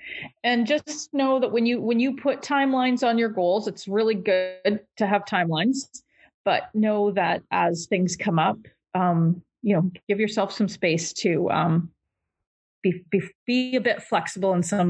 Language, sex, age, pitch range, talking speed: English, female, 30-49, 185-250 Hz, 175 wpm